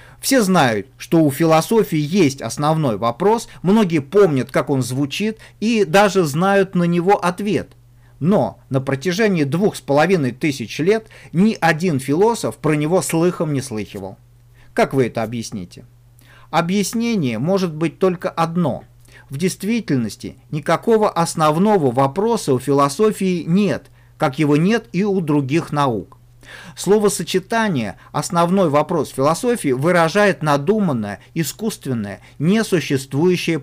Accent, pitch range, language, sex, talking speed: native, 130-195 Hz, Russian, male, 120 wpm